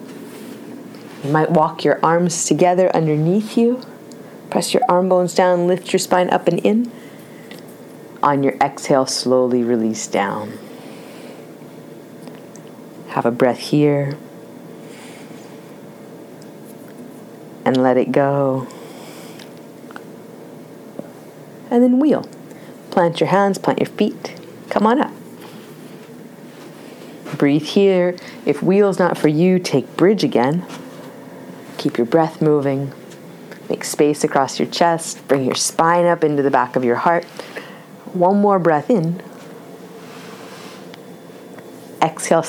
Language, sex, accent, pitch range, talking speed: English, female, American, 140-185 Hz, 110 wpm